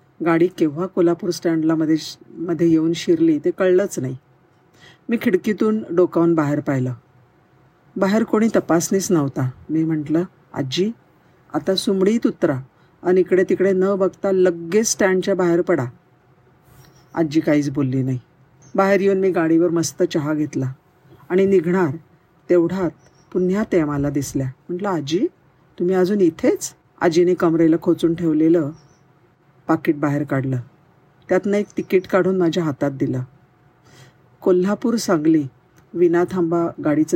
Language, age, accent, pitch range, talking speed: Marathi, 50-69, native, 145-190 Hz, 115 wpm